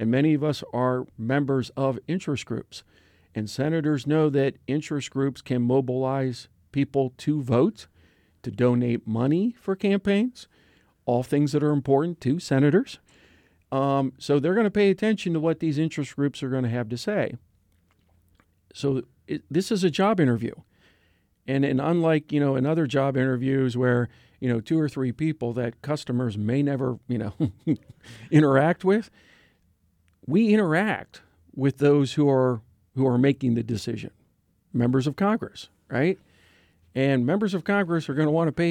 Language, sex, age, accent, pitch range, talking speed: English, male, 50-69, American, 120-155 Hz, 165 wpm